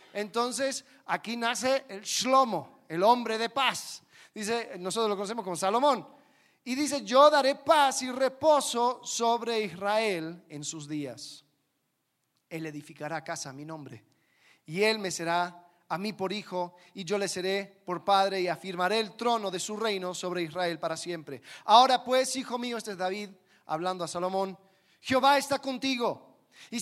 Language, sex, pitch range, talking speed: Spanish, male, 170-240 Hz, 160 wpm